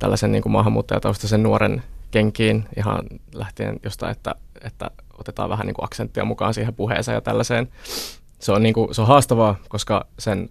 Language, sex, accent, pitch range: Finnish, male, native, 105-115 Hz